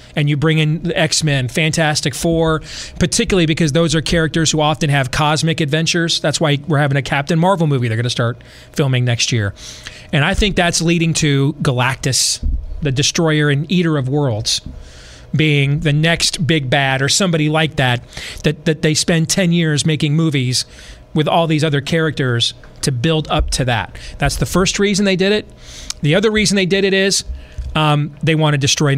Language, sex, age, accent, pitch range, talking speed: English, male, 30-49, American, 135-170 Hz, 190 wpm